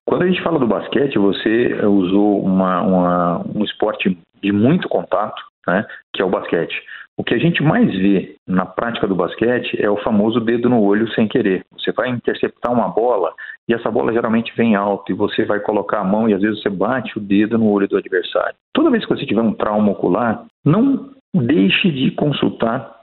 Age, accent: 50-69, Brazilian